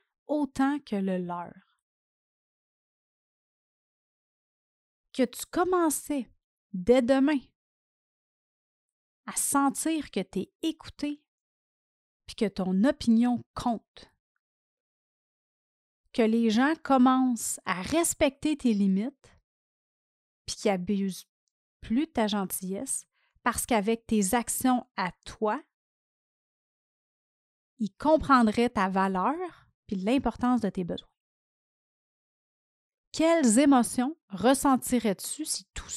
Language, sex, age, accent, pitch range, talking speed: French, female, 30-49, Canadian, 200-275 Hz, 90 wpm